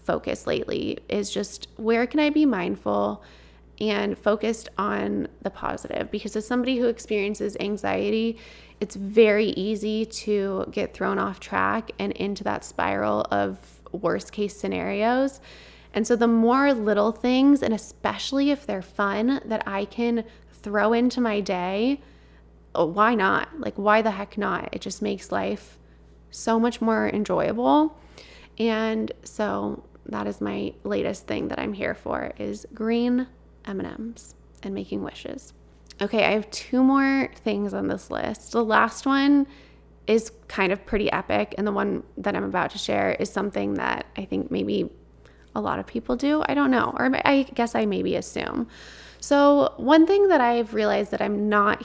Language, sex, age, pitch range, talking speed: English, female, 20-39, 155-235 Hz, 160 wpm